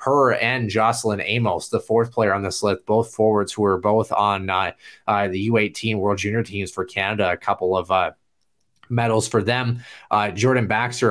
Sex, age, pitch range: male, 30-49, 95-120 Hz